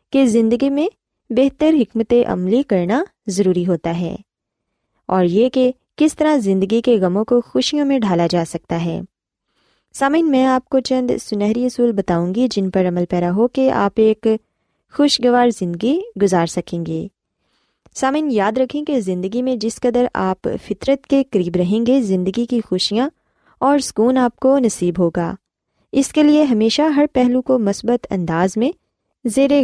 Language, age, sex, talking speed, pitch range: Urdu, 20-39, female, 165 wpm, 185-260 Hz